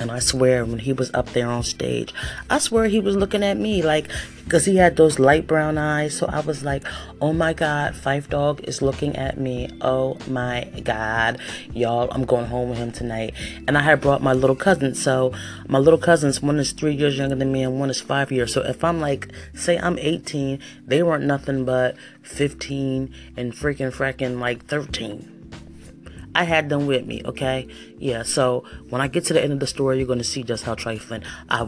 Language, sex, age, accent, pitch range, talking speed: English, female, 30-49, American, 125-170 Hz, 215 wpm